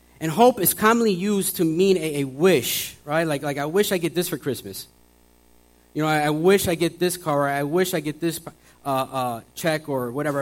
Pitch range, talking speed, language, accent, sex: 120-170 Hz, 225 wpm, English, American, male